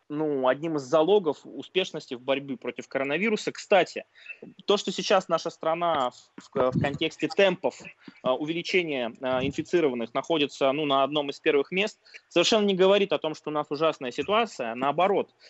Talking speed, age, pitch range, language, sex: 145 wpm, 20-39, 135-180 Hz, Russian, male